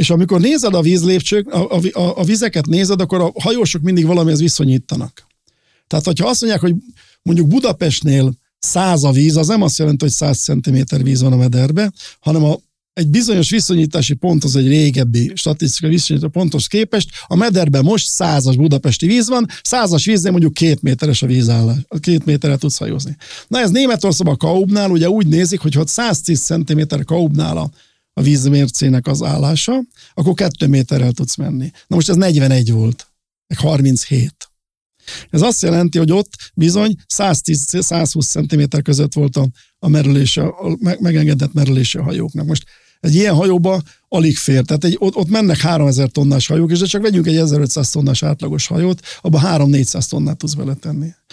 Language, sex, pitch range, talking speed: Hungarian, male, 145-180 Hz, 165 wpm